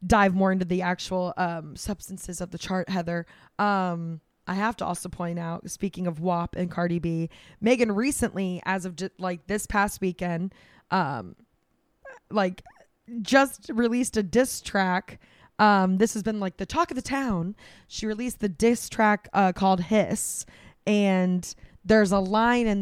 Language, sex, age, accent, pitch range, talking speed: English, female, 20-39, American, 180-210 Hz, 165 wpm